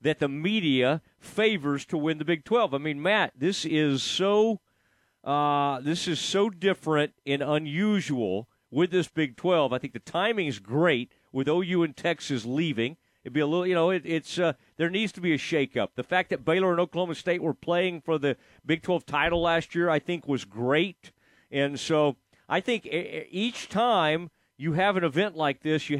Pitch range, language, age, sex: 140-180 Hz, English, 40-59, male